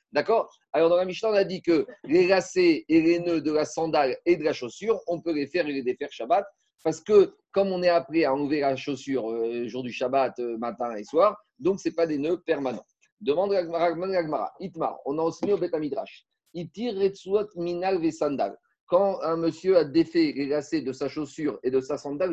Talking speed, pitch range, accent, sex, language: 210 wpm, 150-190 Hz, French, male, French